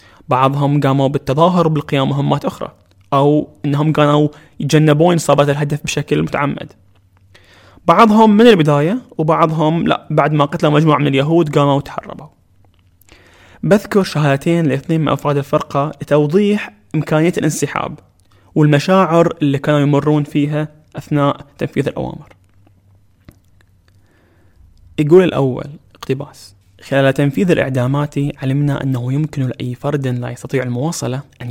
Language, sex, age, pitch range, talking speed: Arabic, male, 20-39, 105-150 Hz, 110 wpm